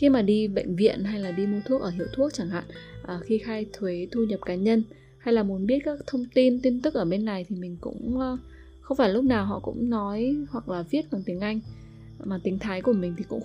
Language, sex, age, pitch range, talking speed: Vietnamese, female, 20-39, 175-225 Hz, 255 wpm